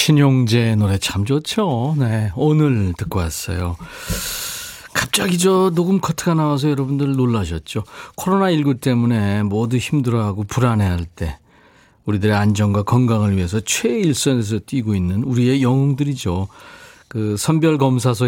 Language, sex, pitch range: Korean, male, 100-150 Hz